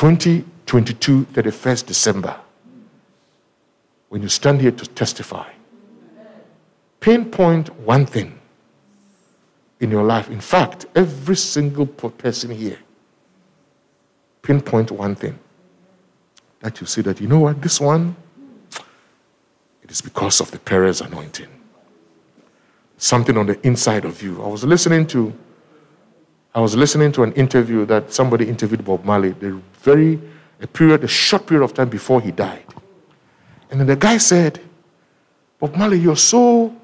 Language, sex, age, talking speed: English, male, 60-79, 135 wpm